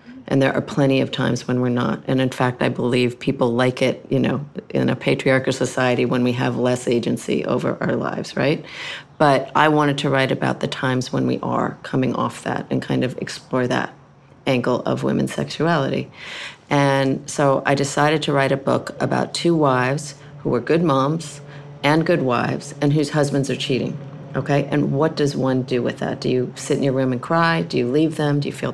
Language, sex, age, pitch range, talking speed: English, female, 40-59, 125-145 Hz, 210 wpm